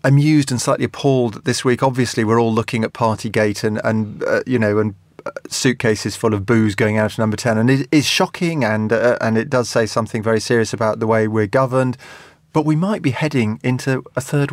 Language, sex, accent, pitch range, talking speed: English, male, British, 105-120 Hz, 220 wpm